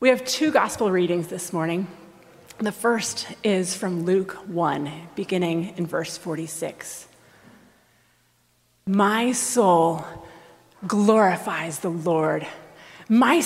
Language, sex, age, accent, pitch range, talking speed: English, female, 30-49, American, 175-245 Hz, 105 wpm